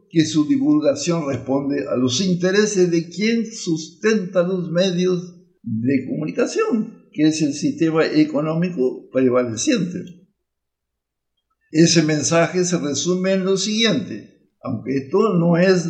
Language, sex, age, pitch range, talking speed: Spanish, male, 60-79, 155-210 Hz, 115 wpm